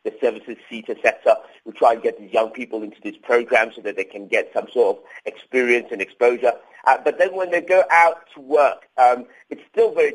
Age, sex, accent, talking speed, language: 50-69, male, British, 230 wpm, English